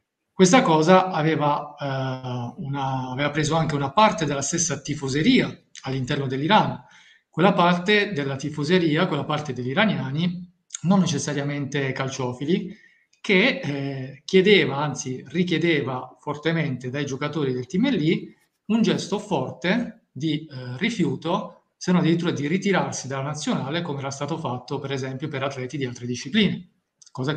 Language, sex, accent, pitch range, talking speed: Italian, male, native, 135-180 Hz, 135 wpm